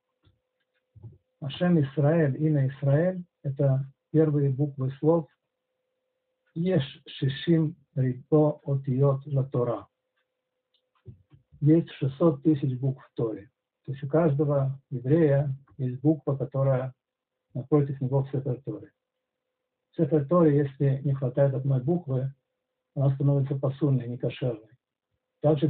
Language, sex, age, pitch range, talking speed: Russian, male, 50-69, 135-160 Hz, 105 wpm